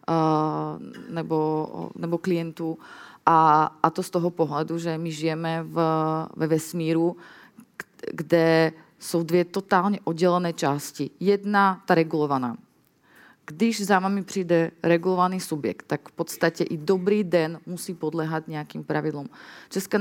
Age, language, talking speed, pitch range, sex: 30-49, Czech, 125 wpm, 165-205 Hz, female